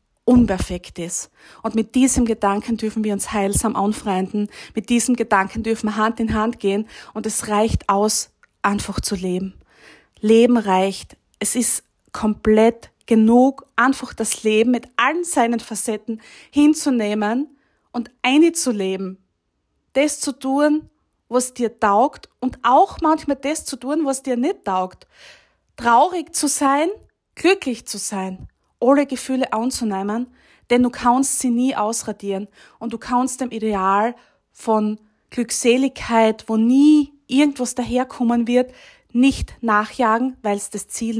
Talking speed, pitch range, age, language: 135 wpm, 210-255 Hz, 20-39, German